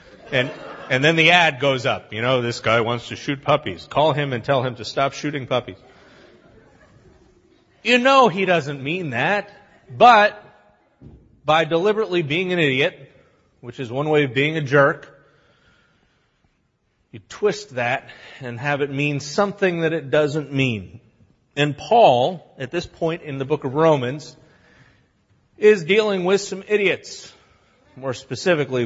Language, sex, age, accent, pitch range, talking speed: English, male, 40-59, American, 120-150 Hz, 150 wpm